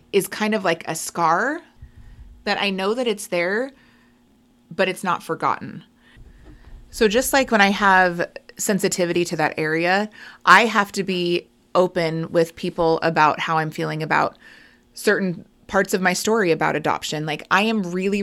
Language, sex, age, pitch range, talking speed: English, female, 20-39, 170-210 Hz, 160 wpm